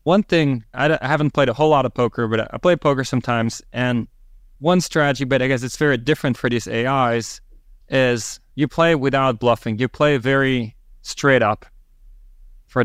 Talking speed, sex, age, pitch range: 180 wpm, male, 20-39, 115-135 Hz